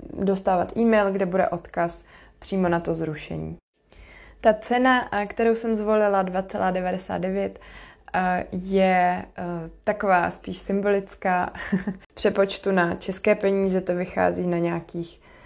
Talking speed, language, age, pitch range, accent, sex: 105 wpm, Czech, 20-39, 180-205 Hz, native, female